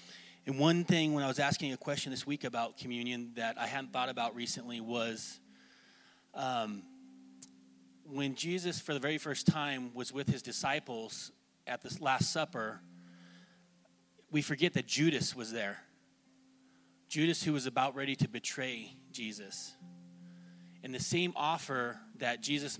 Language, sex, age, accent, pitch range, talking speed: English, male, 30-49, American, 110-160 Hz, 145 wpm